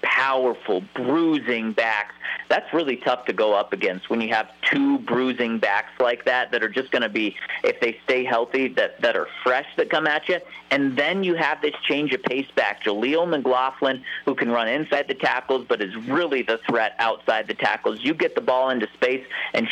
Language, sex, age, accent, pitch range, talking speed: English, male, 40-59, American, 120-165 Hz, 205 wpm